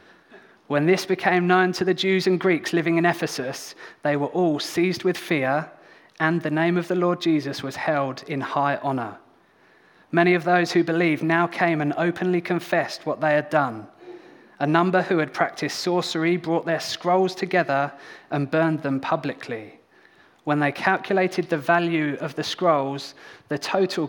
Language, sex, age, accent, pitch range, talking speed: English, male, 20-39, British, 145-170 Hz, 170 wpm